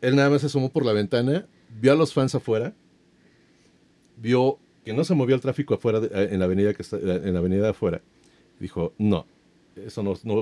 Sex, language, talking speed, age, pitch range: male, Spanish, 205 wpm, 40-59, 95-145 Hz